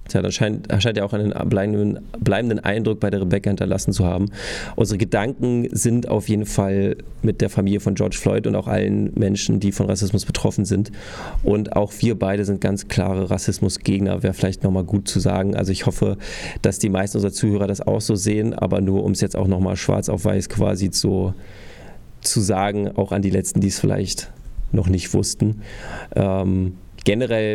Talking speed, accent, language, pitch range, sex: 185 wpm, German, German, 100-110 Hz, male